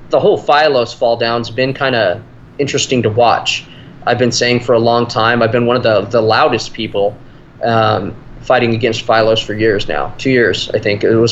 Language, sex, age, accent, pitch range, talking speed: English, male, 20-39, American, 115-130 Hz, 210 wpm